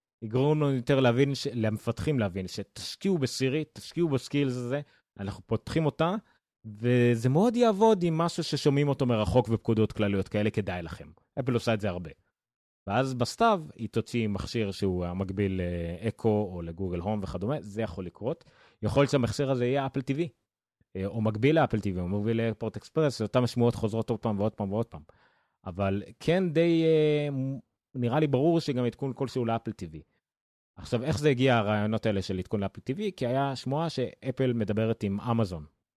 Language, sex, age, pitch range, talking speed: Hebrew, male, 30-49, 100-135 Hz, 145 wpm